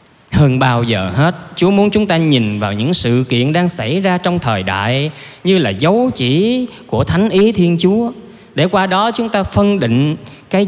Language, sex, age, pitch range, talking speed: Vietnamese, male, 20-39, 115-180 Hz, 200 wpm